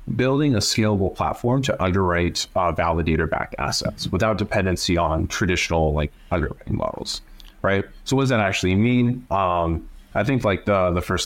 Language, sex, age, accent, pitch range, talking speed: English, male, 30-49, American, 80-110 Hz, 160 wpm